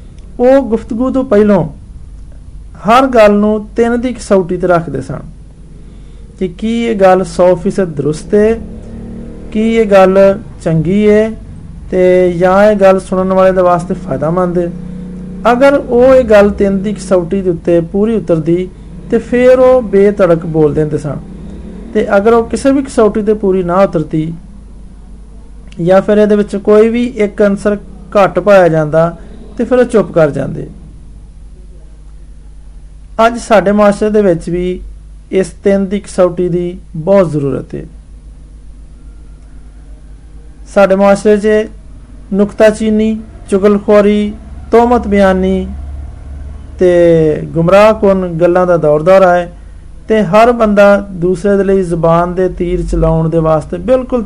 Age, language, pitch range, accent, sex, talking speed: 50-69, Hindi, 165-210 Hz, native, male, 100 wpm